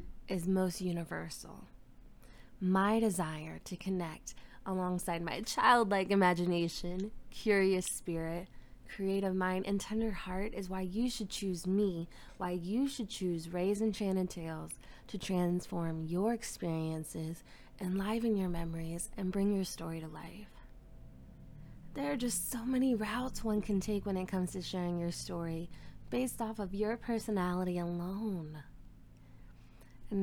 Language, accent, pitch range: English, American, 175-215 Hz